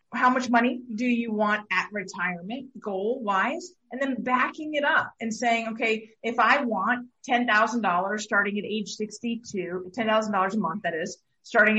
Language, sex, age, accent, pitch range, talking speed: English, female, 30-49, American, 195-240 Hz, 165 wpm